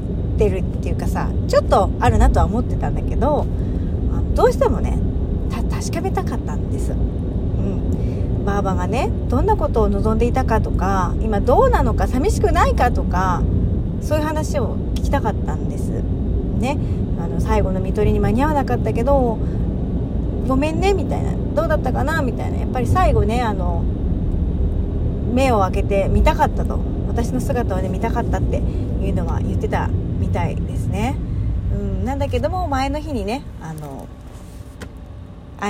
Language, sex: Japanese, female